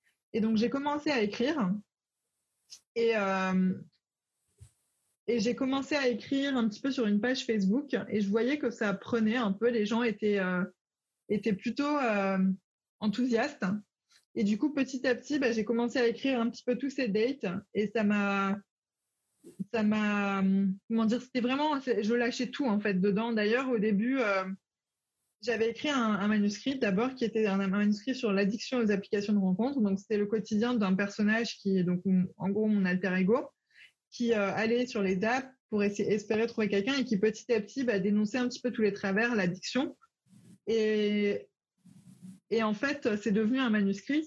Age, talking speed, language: 20-39, 180 wpm, French